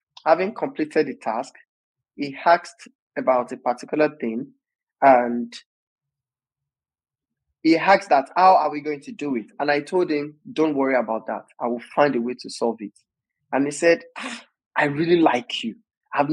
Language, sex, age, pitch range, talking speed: English, male, 20-39, 145-200 Hz, 170 wpm